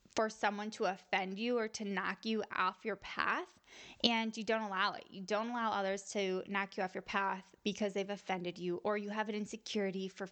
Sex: female